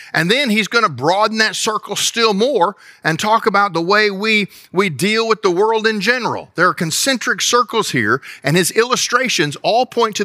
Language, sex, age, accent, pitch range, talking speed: English, male, 50-69, American, 160-225 Hz, 200 wpm